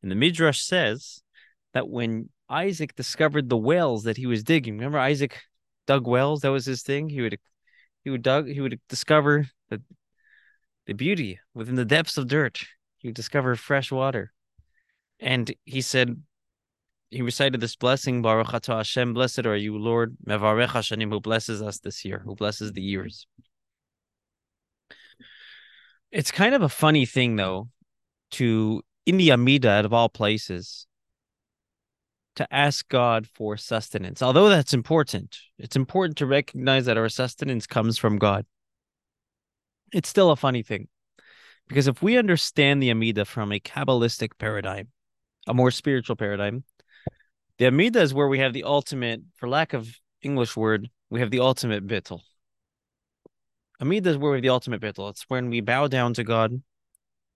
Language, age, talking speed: English, 20-39, 160 wpm